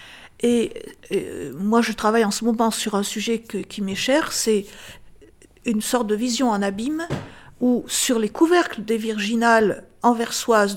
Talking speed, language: 160 wpm, French